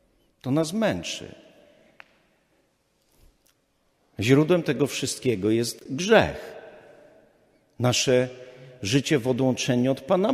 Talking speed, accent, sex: 80 wpm, native, male